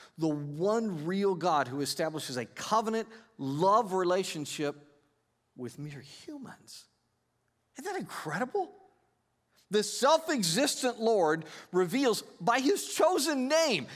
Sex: male